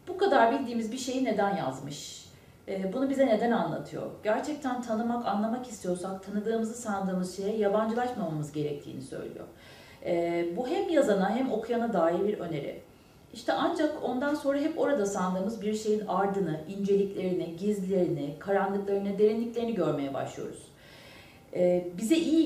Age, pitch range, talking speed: 40-59, 175-230 Hz, 125 wpm